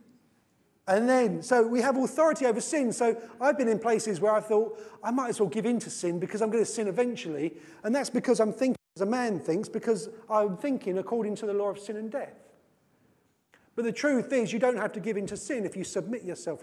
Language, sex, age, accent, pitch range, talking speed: English, male, 40-59, British, 175-235 Hz, 240 wpm